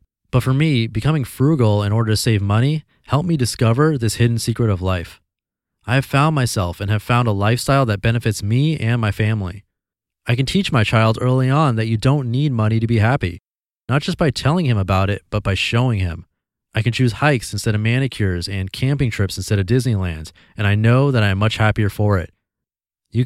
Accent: American